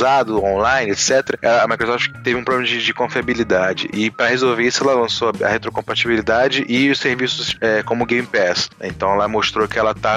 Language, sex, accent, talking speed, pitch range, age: Portuguese, male, Brazilian, 185 wpm, 110-135 Hz, 20-39